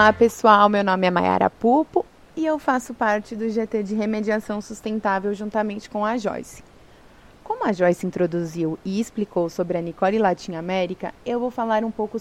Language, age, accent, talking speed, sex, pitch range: Portuguese, 20-39, Brazilian, 180 wpm, female, 185-240 Hz